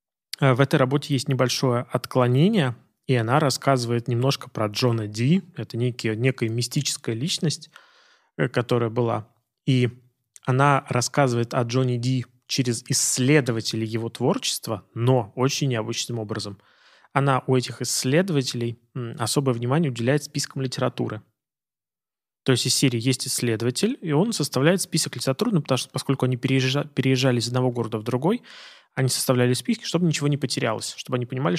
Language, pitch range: Russian, 120-145 Hz